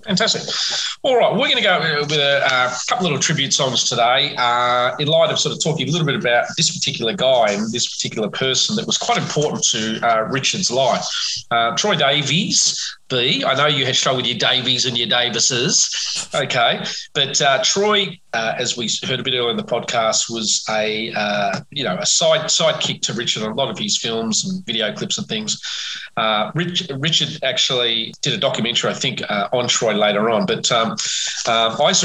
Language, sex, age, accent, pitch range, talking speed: English, male, 30-49, Australian, 120-175 Hz, 205 wpm